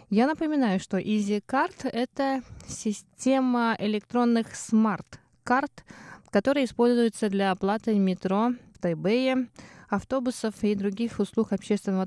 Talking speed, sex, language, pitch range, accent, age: 100 wpm, female, Russian, 190-245 Hz, native, 20-39